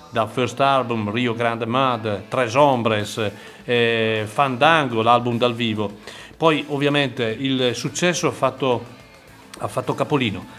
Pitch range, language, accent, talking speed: 110-135 Hz, Italian, native, 125 wpm